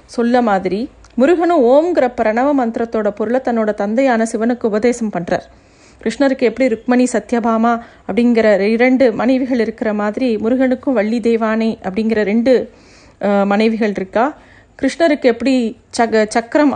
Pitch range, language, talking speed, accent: 220-275 Hz, Tamil, 110 wpm, native